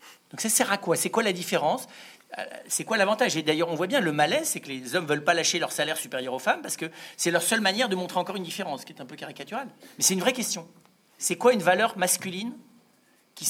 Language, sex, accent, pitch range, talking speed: French, male, French, 155-210 Hz, 260 wpm